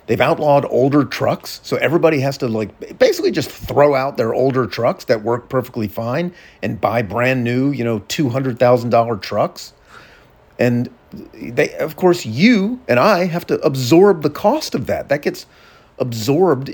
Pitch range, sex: 120-165 Hz, male